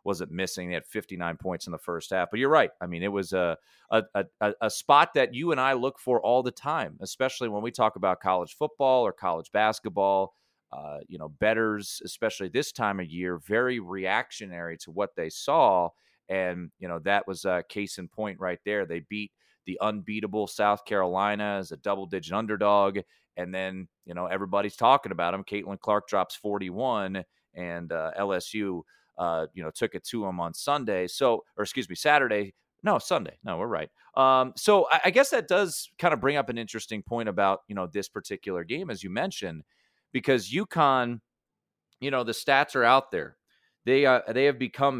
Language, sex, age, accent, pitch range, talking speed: English, male, 30-49, American, 95-125 Hz, 195 wpm